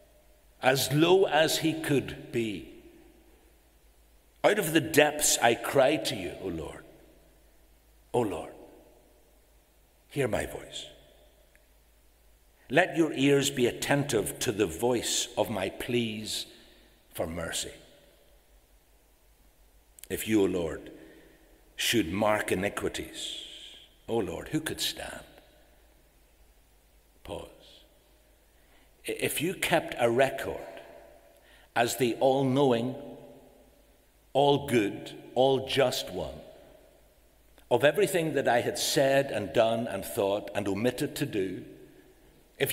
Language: English